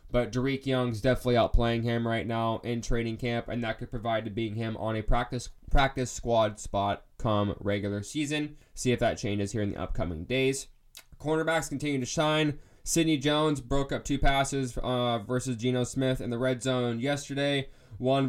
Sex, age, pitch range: male, 20-39, 120-160 Hz